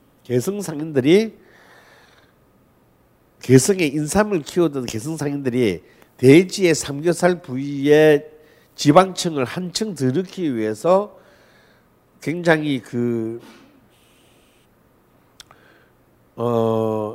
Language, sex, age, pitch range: Korean, male, 50-69, 120-170 Hz